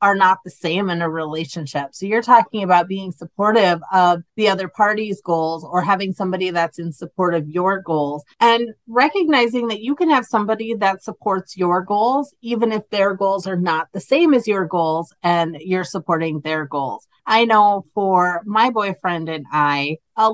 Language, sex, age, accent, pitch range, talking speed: English, female, 30-49, American, 175-220 Hz, 185 wpm